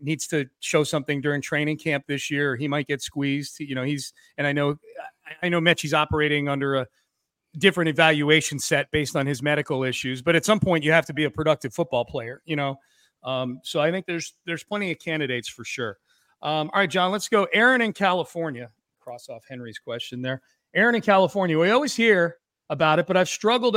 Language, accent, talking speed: English, American, 210 wpm